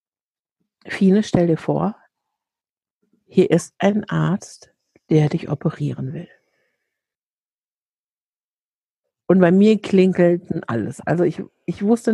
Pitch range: 175-225 Hz